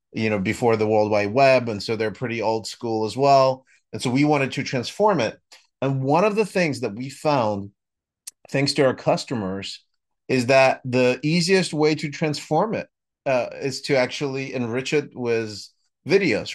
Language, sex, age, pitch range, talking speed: English, male, 30-49, 110-135 Hz, 180 wpm